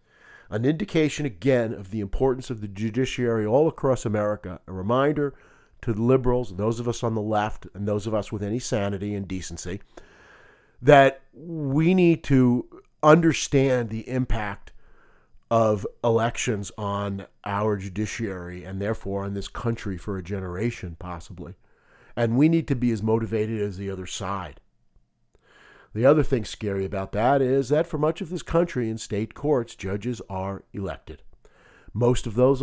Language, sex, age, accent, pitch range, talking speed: English, male, 40-59, American, 95-125 Hz, 160 wpm